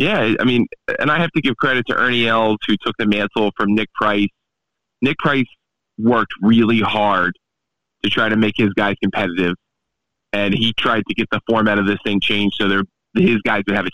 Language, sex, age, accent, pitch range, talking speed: English, male, 20-39, American, 100-120 Hz, 210 wpm